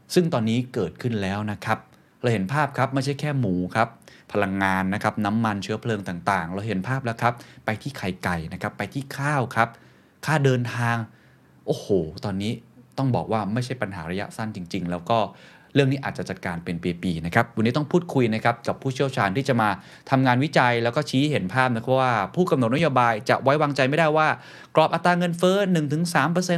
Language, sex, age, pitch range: Thai, male, 20-39, 100-135 Hz